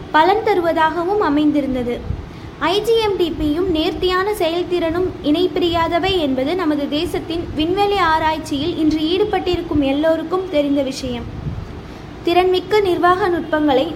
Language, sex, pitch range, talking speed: Tamil, female, 295-365 Hz, 85 wpm